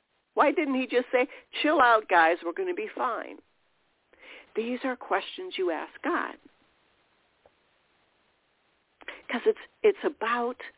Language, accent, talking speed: English, American, 120 wpm